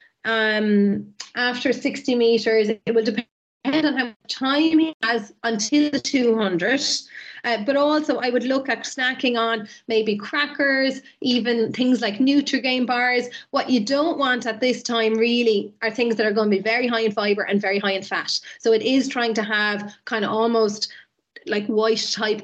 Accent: Irish